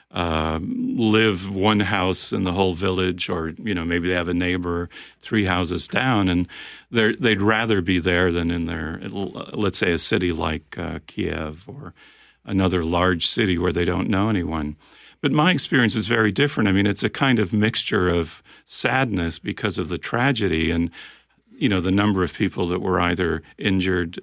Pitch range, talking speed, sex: 85-105 Hz, 180 wpm, male